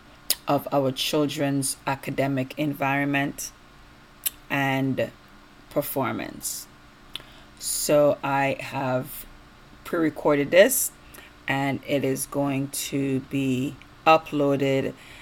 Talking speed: 75 wpm